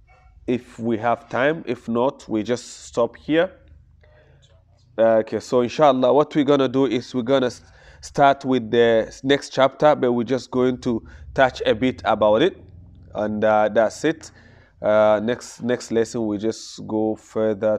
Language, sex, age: English, male, 20-39